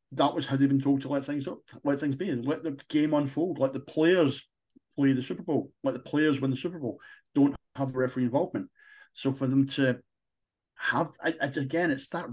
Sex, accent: male, British